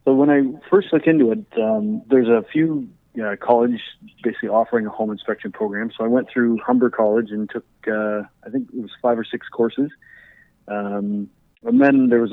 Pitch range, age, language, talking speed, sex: 105-125 Hz, 30-49, English, 205 wpm, male